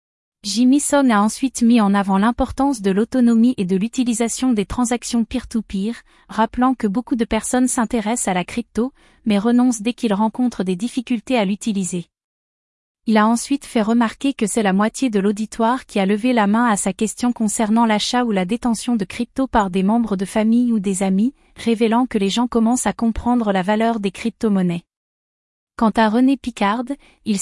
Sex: female